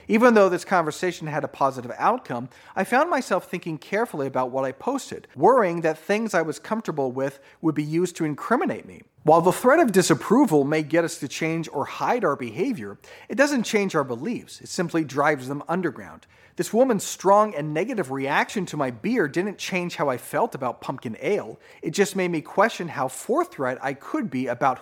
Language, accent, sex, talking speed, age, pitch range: English, American, male, 200 wpm, 40-59, 140-190 Hz